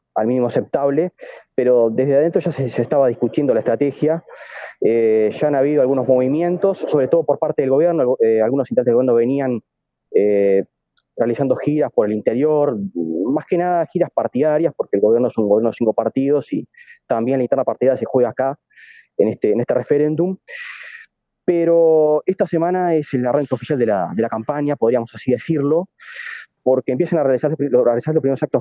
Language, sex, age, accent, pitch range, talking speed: English, male, 20-39, Argentinian, 120-170 Hz, 185 wpm